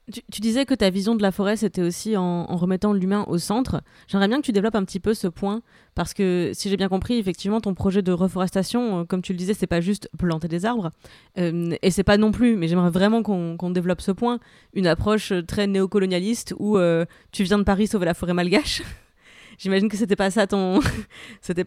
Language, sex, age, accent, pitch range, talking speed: French, female, 30-49, French, 185-230 Hz, 235 wpm